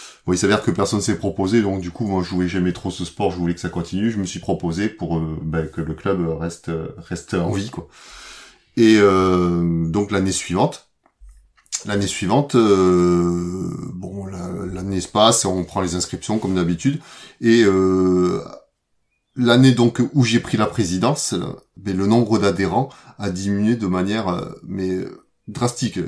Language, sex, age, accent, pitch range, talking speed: French, male, 30-49, French, 90-110 Hz, 175 wpm